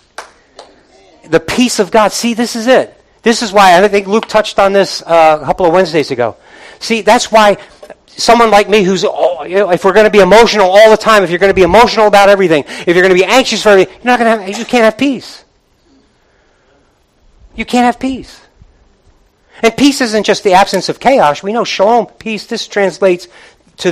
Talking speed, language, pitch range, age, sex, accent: 215 wpm, English, 175-235 Hz, 50-69, male, American